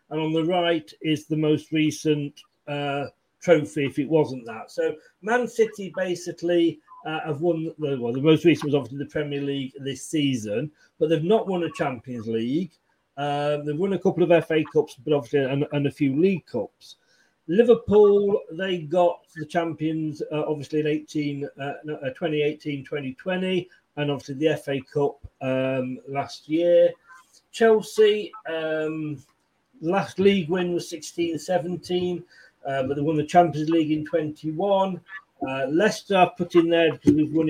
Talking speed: 155 wpm